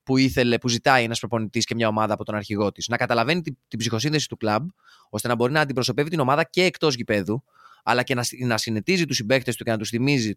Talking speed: 230 wpm